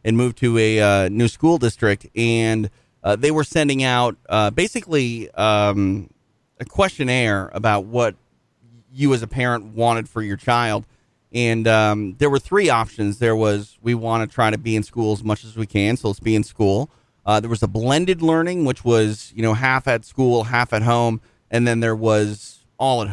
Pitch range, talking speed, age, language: 110-130 Hz, 200 wpm, 30-49, English